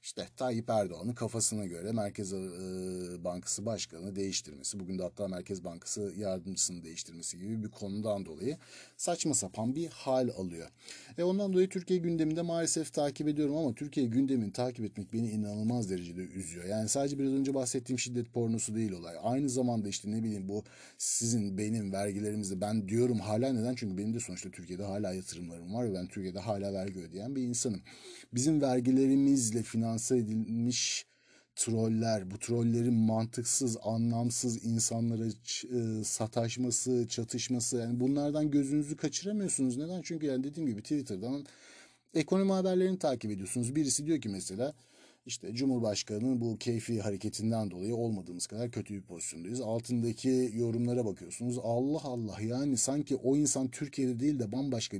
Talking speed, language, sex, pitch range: 145 wpm, Turkish, male, 105-130 Hz